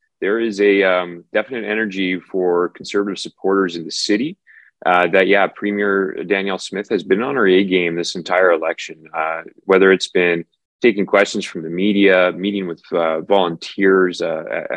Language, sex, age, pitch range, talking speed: English, male, 20-39, 85-100 Hz, 165 wpm